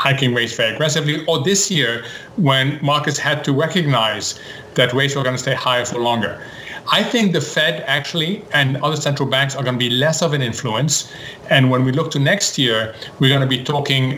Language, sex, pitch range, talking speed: English, male, 130-165 Hz, 210 wpm